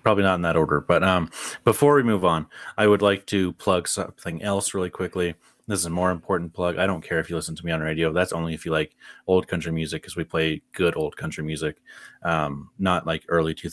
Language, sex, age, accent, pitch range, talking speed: English, male, 30-49, American, 85-100 Hz, 240 wpm